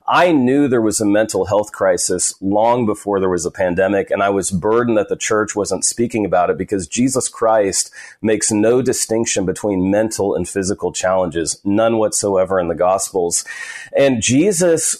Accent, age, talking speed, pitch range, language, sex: American, 40-59, 170 wpm, 100-130 Hz, English, male